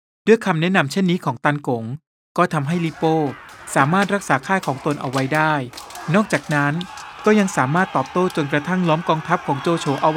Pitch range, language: 140-175 Hz, Thai